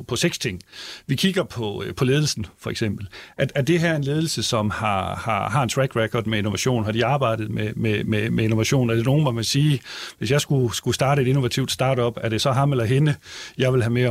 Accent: native